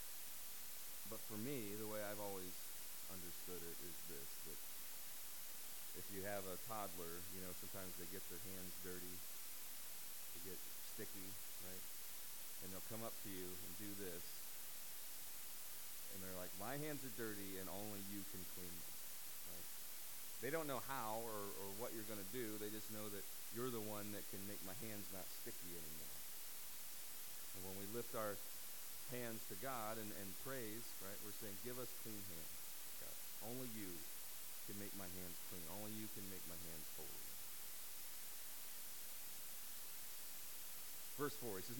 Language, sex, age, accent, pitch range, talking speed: English, male, 40-59, American, 90-125 Hz, 160 wpm